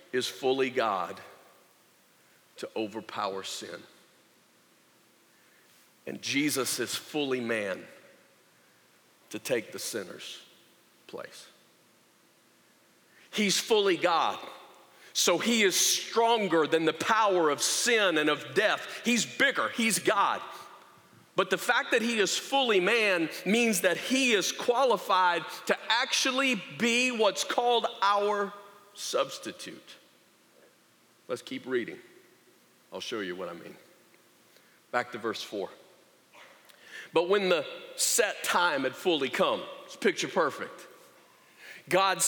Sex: male